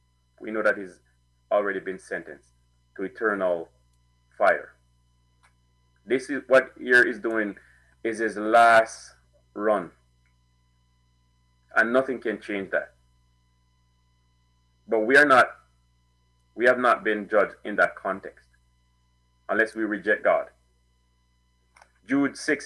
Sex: male